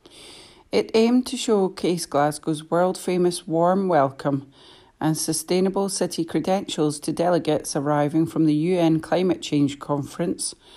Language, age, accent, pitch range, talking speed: English, 40-59, British, 155-185 Hz, 115 wpm